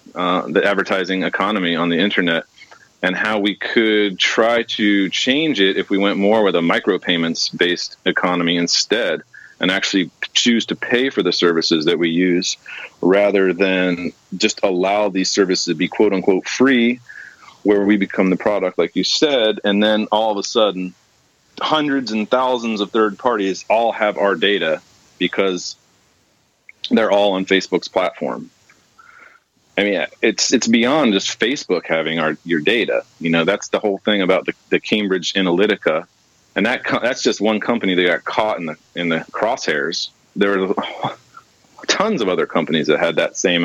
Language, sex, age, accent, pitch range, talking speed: English, male, 30-49, American, 90-115 Hz, 165 wpm